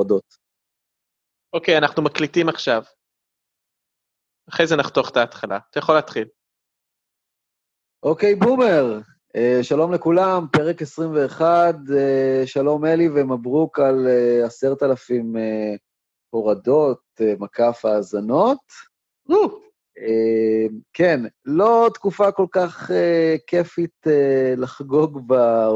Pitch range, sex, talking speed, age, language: 115-165 Hz, male, 85 wpm, 30-49, Hebrew